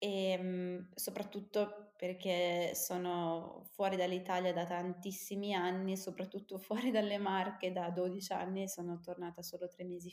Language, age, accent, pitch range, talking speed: Italian, 20-39, native, 175-200 Hz, 125 wpm